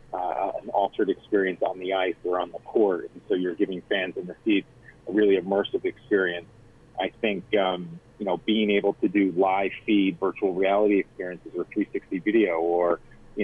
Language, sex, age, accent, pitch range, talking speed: English, male, 40-59, American, 95-110 Hz, 190 wpm